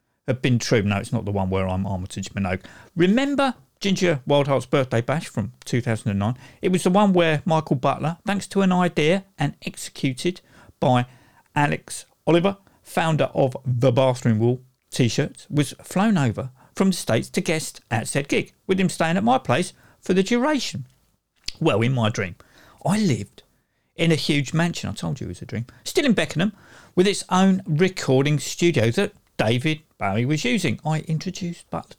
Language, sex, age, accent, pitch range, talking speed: English, male, 50-69, British, 120-185 Hz, 175 wpm